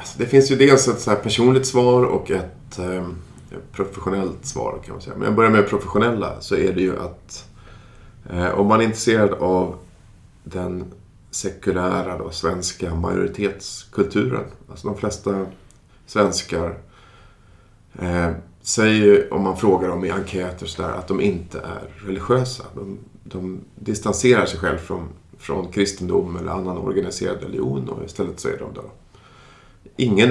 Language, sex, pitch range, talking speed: Swedish, male, 95-110 Hz, 150 wpm